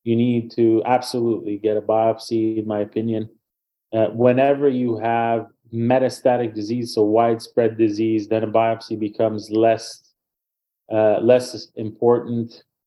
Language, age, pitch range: English, 30-49, 110-125 Hz